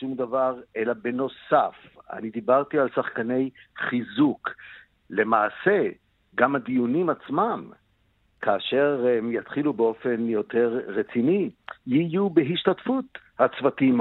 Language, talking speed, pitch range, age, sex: Hebrew, 95 wpm, 125-165 Hz, 60-79, male